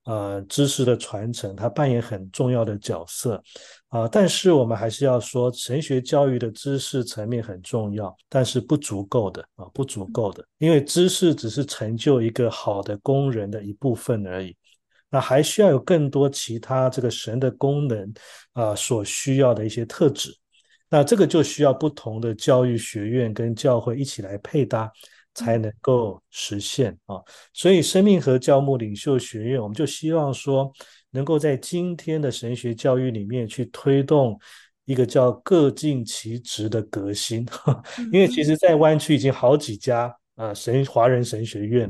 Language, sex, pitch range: Chinese, male, 110-140 Hz